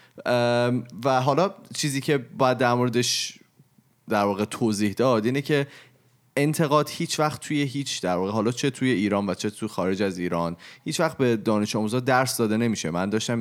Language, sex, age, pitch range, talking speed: Persian, male, 30-49, 100-125 Hz, 180 wpm